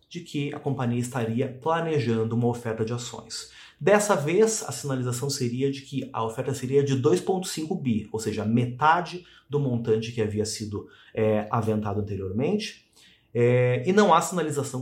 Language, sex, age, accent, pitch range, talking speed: English, male, 30-49, Brazilian, 110-155 Hz, 150 wpm